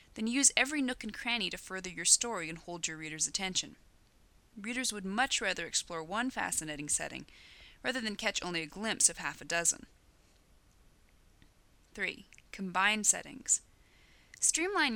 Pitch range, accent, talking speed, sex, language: 165-235 Hz, American, 150 wpm, female, English